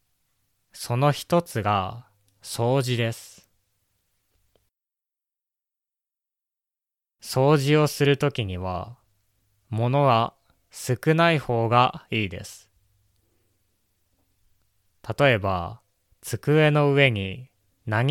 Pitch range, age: 100-130 Hz, 20-39